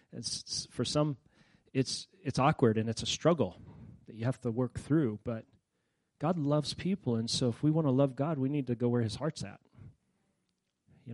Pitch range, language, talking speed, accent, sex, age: 125-155 Hz, English, 205 wpm, American, male, 40-59